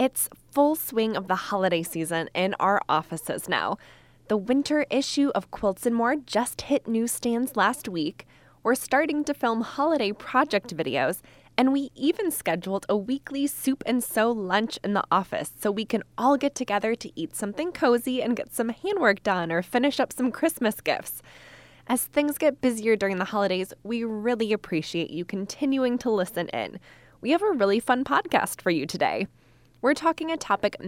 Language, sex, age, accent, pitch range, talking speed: English, female, 20-39, American, 195-270 Hz, 180 wpm